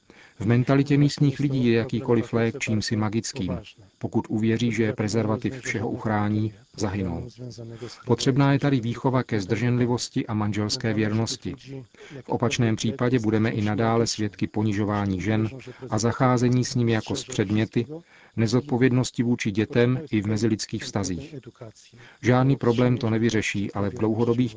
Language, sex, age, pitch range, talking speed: Czech, male, 40-59, 105-125 Hz, 135 wpm